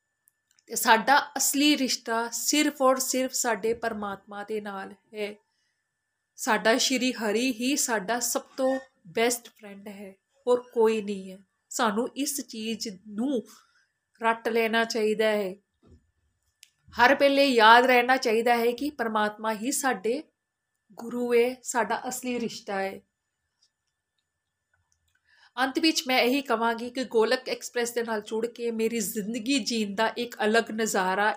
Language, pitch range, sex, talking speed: Punjabi, 210-250 Hz, female, 125 wpm